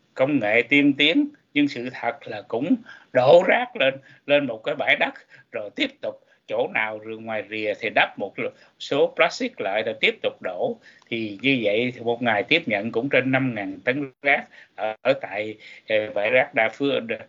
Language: Vietnamese